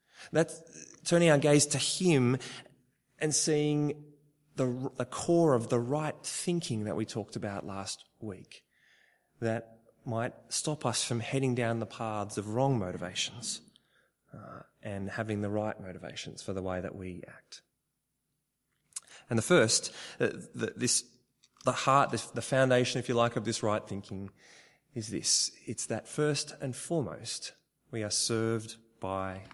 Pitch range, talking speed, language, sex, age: 110-150 Hz, 150 wpm, English, male, 20-39